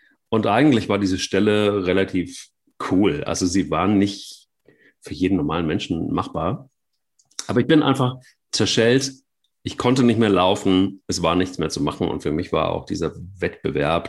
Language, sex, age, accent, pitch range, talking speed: German, male, 40-59, German, 90-120 Hz, 165 wpm